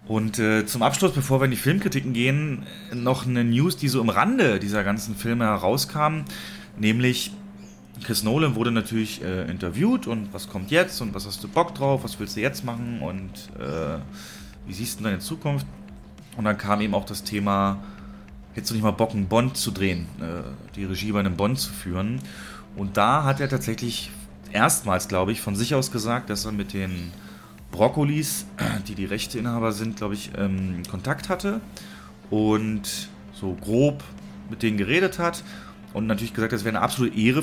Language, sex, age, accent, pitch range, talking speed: German, male, 30-49, German, 100-130 Hz, 185 wpm